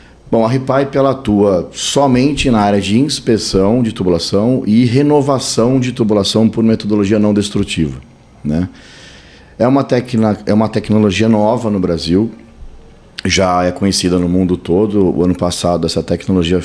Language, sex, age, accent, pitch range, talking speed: Portuguese, male, 40-59, Brazilian, 90-110 Hz, 145 wpm